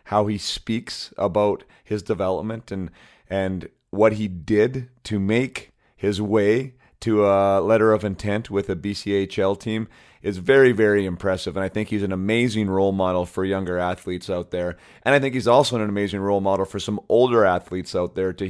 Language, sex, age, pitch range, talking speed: English, male, 30-49, 95-110 Hz, 185 wpm